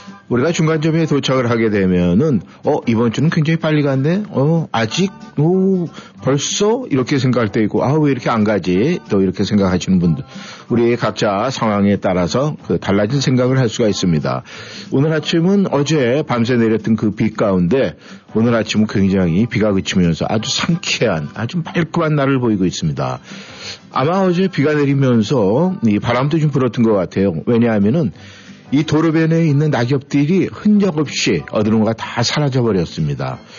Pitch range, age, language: 105-150 Hz, 50-69, Korean